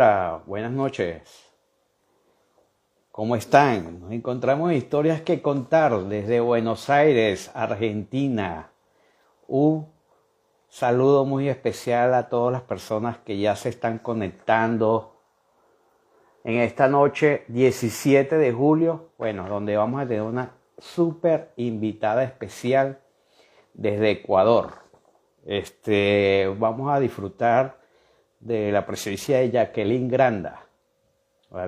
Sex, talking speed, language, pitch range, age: male, 100 wpm, Spanish, 110-140 Hz, 50-69